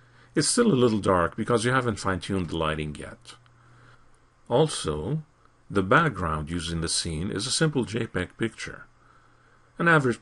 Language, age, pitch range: English, 50-69, 90-125 Hz